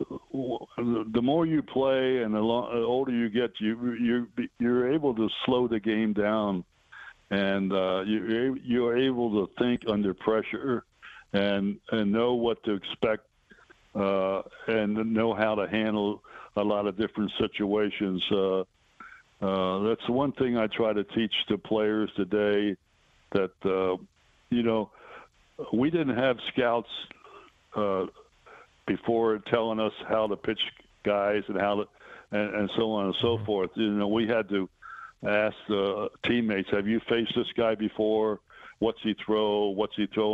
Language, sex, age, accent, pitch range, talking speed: English, male, 60-79, American, 100-115 Hz, 150 wpm